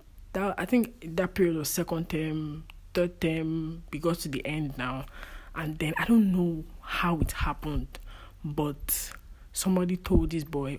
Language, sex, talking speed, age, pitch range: English, male, 160 wpm, 20-39, 140-190 Hz